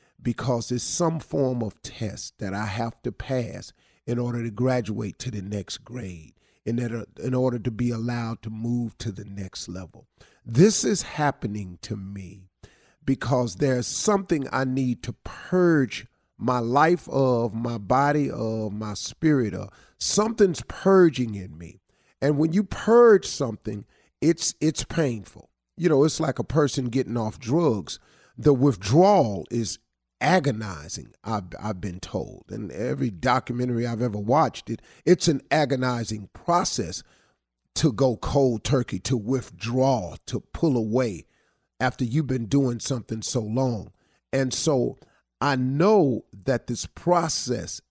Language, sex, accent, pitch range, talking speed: English, male, American, 110-150 Hz, 145 wpm